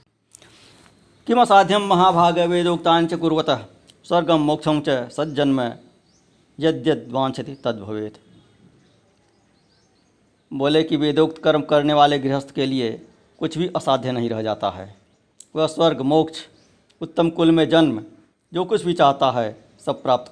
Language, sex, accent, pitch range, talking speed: Hindi, male, native, 120-170 Hz, 115 wpm